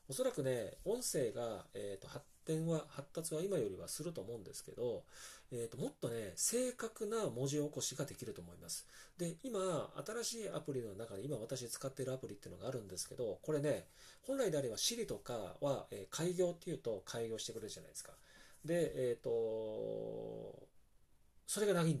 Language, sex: Japanese, male